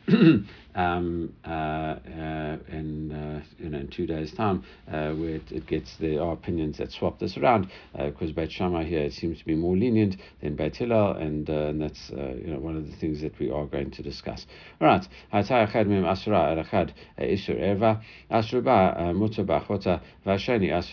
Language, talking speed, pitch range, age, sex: English, 155 wpm, 80-95 Hz, 60-79, male